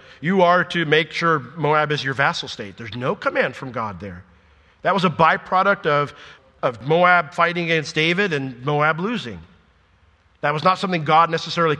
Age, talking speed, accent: 40-59, 180 wpm, American